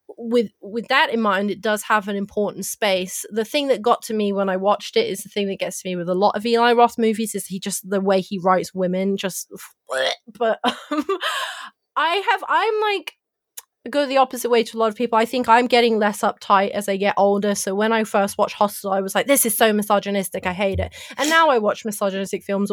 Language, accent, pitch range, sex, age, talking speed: English, British, 195-230 Hz, female, 20-39, 240 wpm